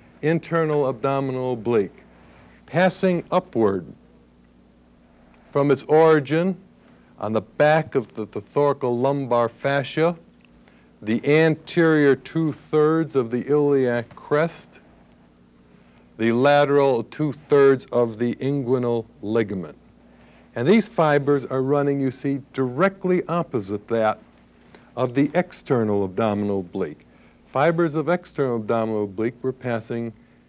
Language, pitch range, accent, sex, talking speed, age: English, 105-145 Hz, American, male, 105 wpm, 60-79